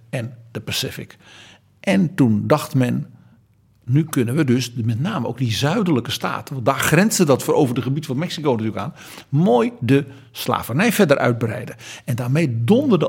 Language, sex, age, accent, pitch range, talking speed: Dutch, male, 50-69, Dutch, 115-150 Hz, 170 wpm